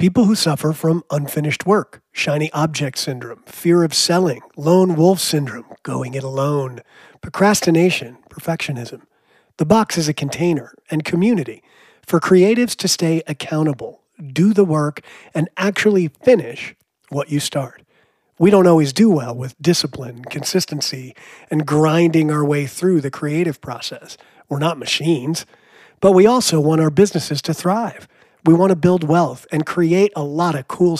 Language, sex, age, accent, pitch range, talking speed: English, male, 40-59, American, 145-180 Hz, 155 wpm